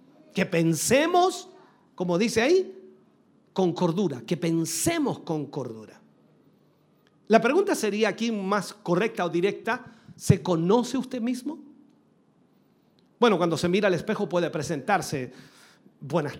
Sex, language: male, Spanish